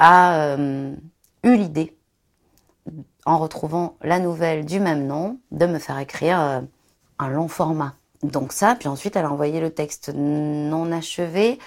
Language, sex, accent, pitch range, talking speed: French, female, French, 145-175 Hz, 155 wpm